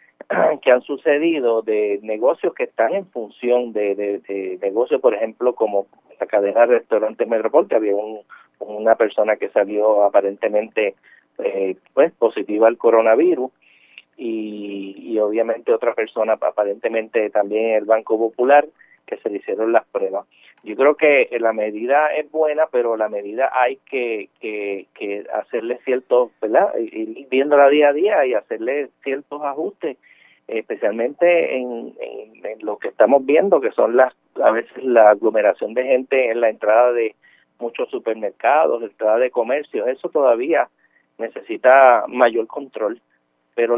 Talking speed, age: 150 wpm, 30-49